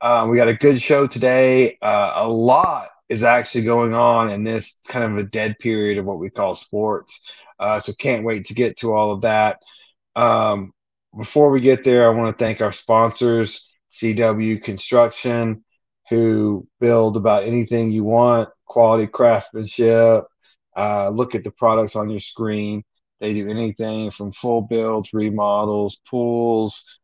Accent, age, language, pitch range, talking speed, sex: American, 30-49, English, 105-120 Hz, 160 wpm, male